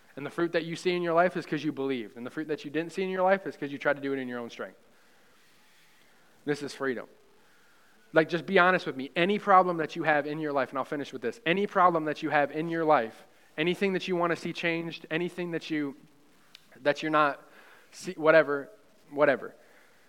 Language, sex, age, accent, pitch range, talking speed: English, male, 20-39, American, 140-165 Hz, 240 wpm